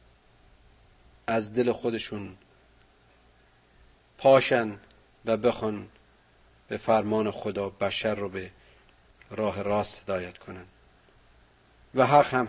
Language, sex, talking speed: Persian, male, 90 wpm